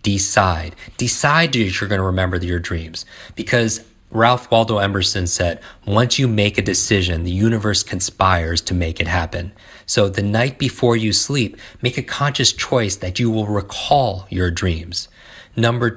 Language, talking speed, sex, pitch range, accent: English, 160 wpm, male, 90-115 Hz, American